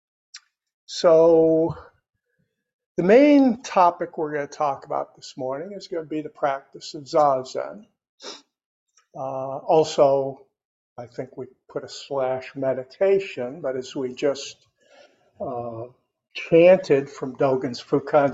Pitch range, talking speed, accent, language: 135-175 Hz, 120 wpm, American, English